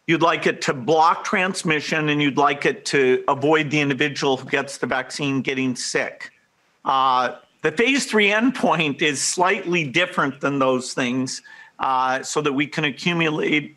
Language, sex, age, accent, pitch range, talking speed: English, male, 50-69, American, 140-175 Hz, 160 wpm